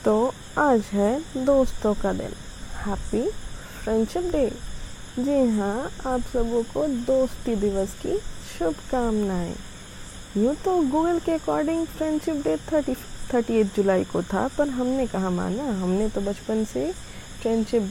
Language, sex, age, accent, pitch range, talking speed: Hindi, female, 20-39, native, 215-290 Hz, 130 wpm